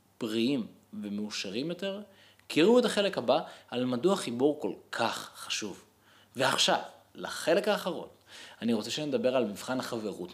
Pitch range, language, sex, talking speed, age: 115-195 Hz, Hebrew, male, 135 wpm, 20-39